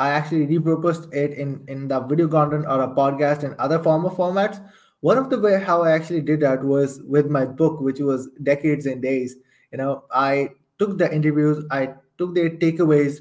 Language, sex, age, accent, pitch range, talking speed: English, male, 20-39, Indian, 140-175 Hz, 205 wpm